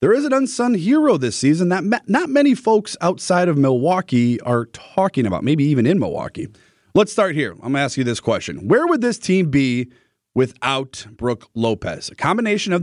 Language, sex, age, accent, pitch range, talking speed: English, male, 30-49, American, 130-180 Hz, 195 wpm